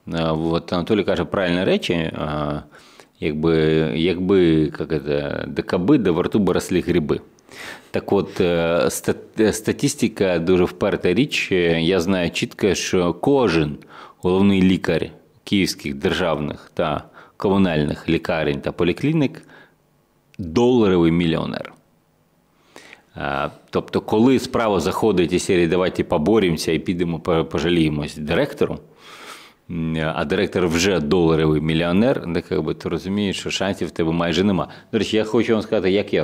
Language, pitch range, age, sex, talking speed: Ukrainian, 80-95 Hz, 30-49, male, 125 wpm